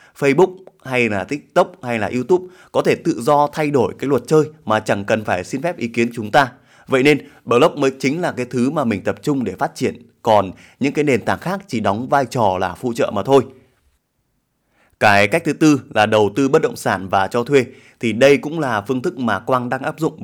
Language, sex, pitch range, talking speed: Vietnamese, male, 115-145 Hz, 235 wpm